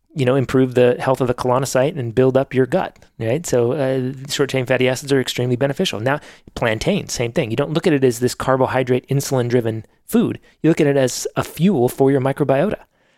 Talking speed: 210 wpm